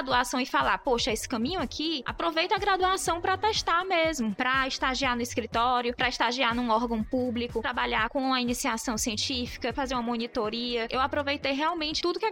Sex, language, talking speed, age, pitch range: female, Portuguese, 175 wpm, 20-39, 230-300 Hz